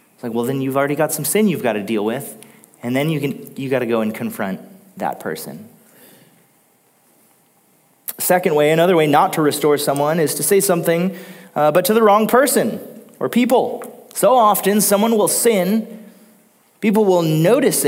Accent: American